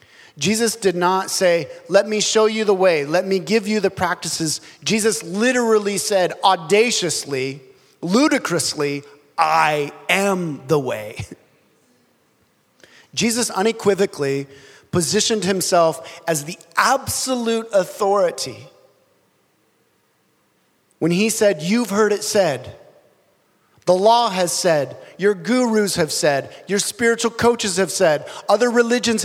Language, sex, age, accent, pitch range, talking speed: English, male, 30-49, American, 160-210 Hz, 115 wpm